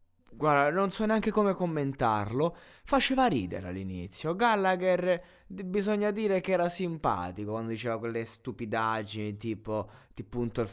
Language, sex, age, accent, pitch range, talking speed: Italian, male, 20-39, native, 115-155 Hz, 130 wpm